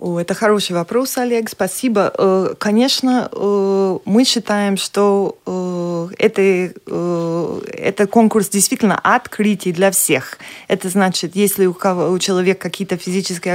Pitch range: 180-220 Hz